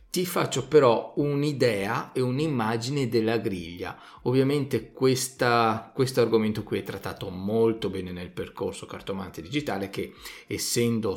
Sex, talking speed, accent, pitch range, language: male, 120 wpm, native, 110-150 Hz, Italian